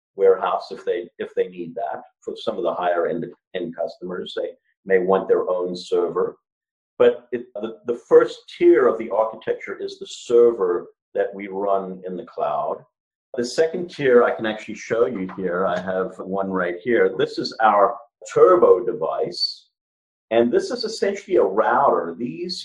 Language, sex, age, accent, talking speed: English, male, 50-69, American, 170 wpm